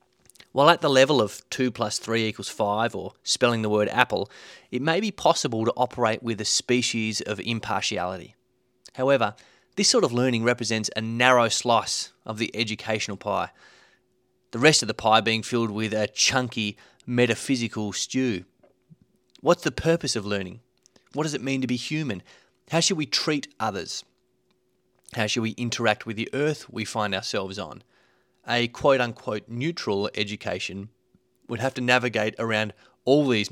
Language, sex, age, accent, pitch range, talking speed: English, male, 30-49, Australian, 110-130 Hz, 160 wpm